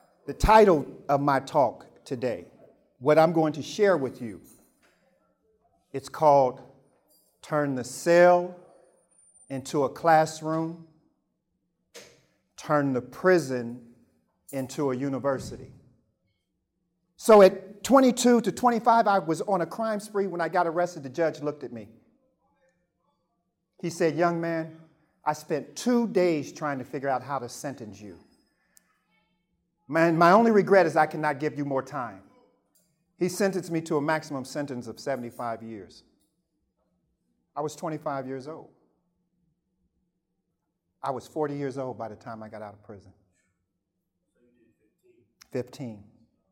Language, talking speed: English, 135 wpm